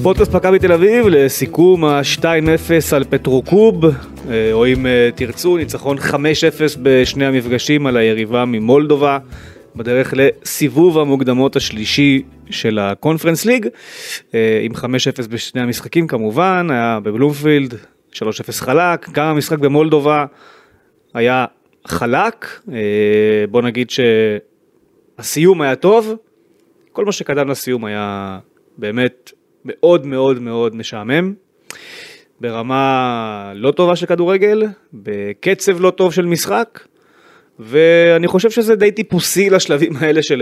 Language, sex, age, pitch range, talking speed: Hebrew, male, 30-49, 120-165 Hz, 110 wpm